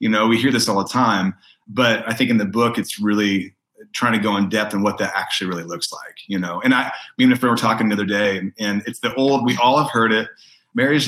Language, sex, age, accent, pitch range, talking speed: English, male, 30-49, American, 105-135 Hz, 270 wpm